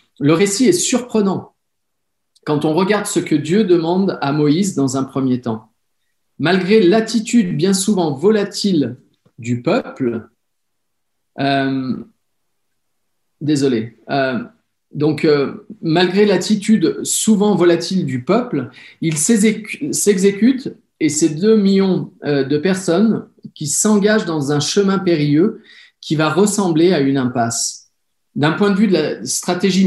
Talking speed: 125 wpm